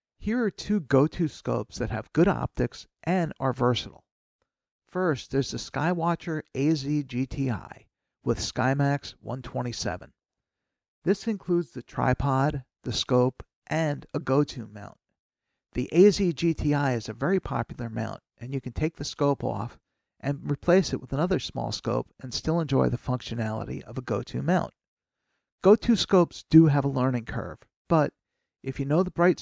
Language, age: English, 50-69